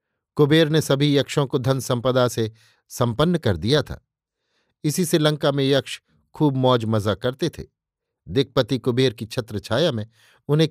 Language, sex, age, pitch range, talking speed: Hindi, male, 50-69, 115-145 Hz, 155 wpm